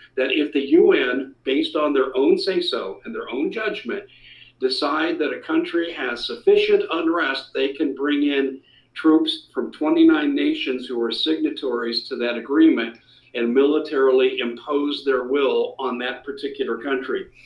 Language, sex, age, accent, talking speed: English, male, 50-69, American, 150 wpm